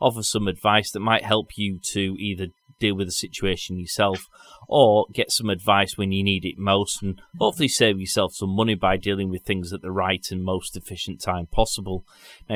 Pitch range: 90-105 Hz